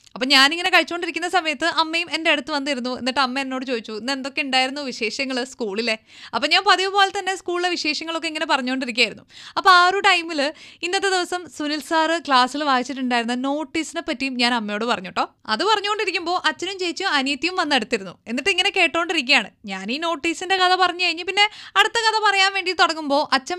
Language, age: Malayalam, 20-39